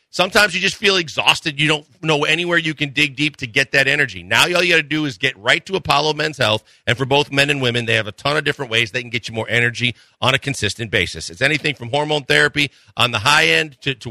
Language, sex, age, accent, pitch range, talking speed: English, male, 40-59, American, 120-150 Hz, 270 wpm